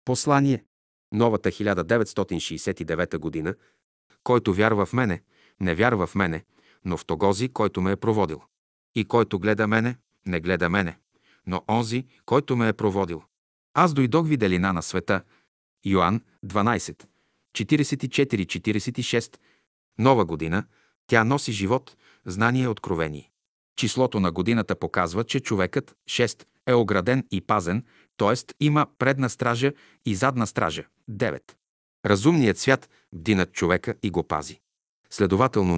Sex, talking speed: male, 125 wpm